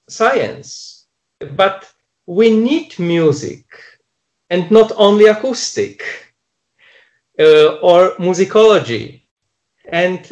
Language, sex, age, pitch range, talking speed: English, male, 40-59, 130-215 Hz, 75 wpm